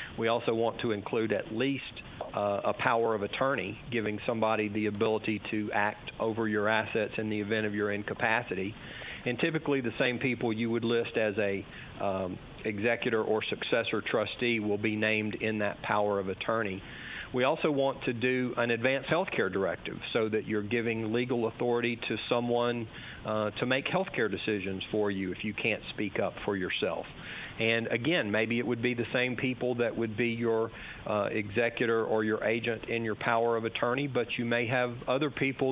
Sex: male